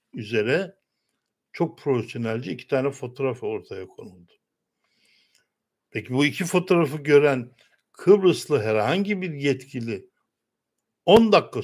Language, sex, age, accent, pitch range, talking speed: Turkish, male, 60-79, native, 120-150 Hz, 100 wpm